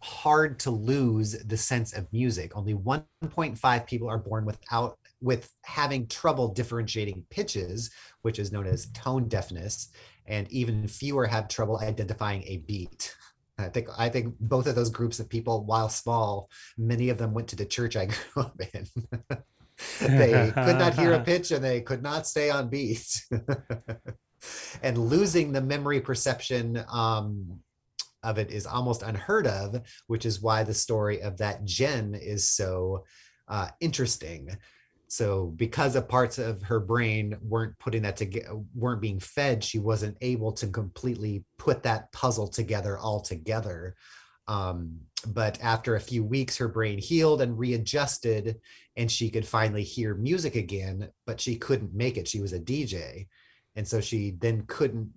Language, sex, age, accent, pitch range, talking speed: English, male, 30-49, American, 105-125 Hz, 160 wpm